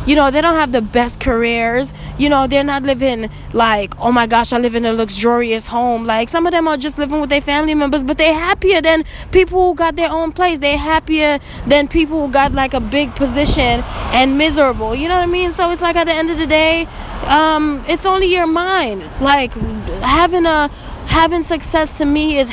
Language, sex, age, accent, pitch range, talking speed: English, female, 20-39, American, 245-295 Hz, 220 wpm